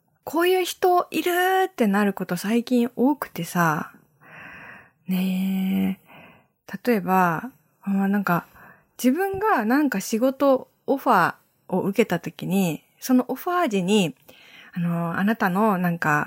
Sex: female